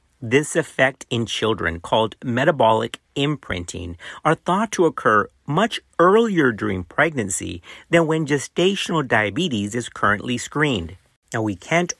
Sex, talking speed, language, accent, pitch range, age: male, 125 wpm, English, American, 100-145 Hz, 50-69